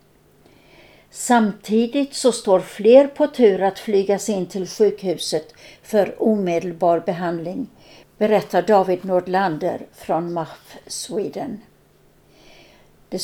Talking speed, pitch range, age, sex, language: 95 wpm, 185-230 Hz, 60-79, female, Swedish